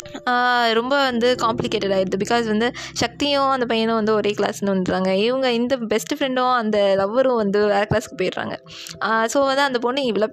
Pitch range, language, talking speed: 210-265 Hz, Tamil, 165 wpm